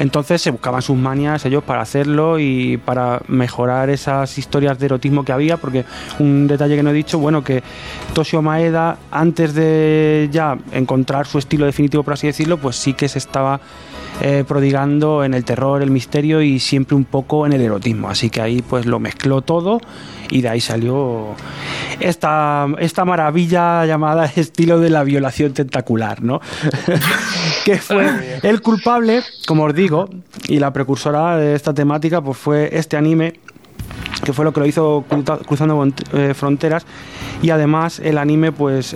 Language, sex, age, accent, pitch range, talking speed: Spanish, male, 20-39, Spanish, 135-160 Hz, 165 wpm